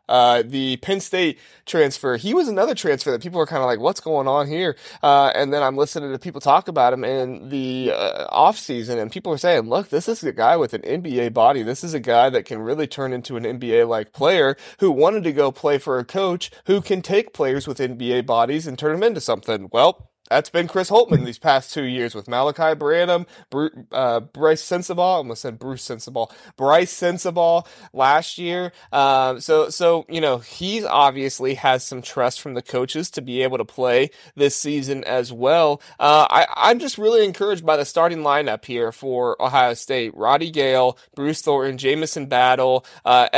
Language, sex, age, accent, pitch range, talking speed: English, male, 20-39, American, 130-170 Hz, 205 wpm